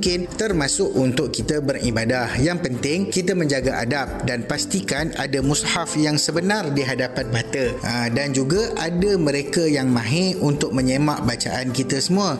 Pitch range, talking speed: 135-170 Hz, 145 wpm